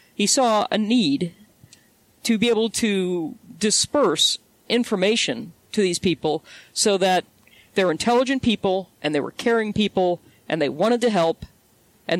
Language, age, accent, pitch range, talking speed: English, 40-59, American, 170-215 Hz, 145 wpm